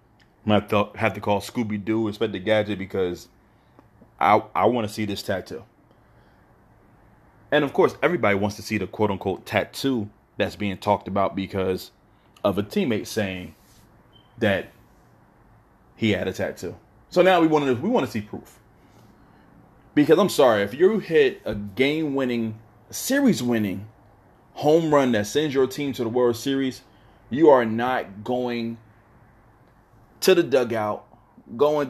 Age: 30-49